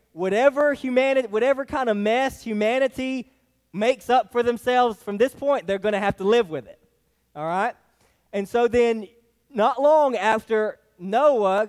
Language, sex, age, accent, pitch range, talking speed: English, male, 20-39, American, 205-260 Hz, 160 wpm